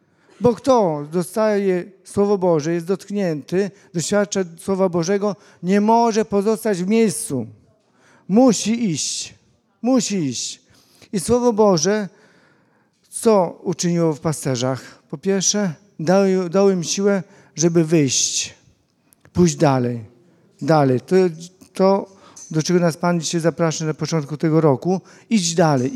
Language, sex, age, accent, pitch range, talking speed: Polish, male, 50-69, native, 155-195 Hz, 120 wpm